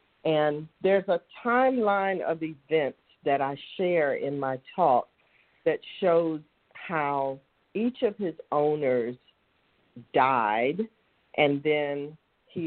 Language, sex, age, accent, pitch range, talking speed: English, female, 50-69, American, 135-175 Hz, 110 wpm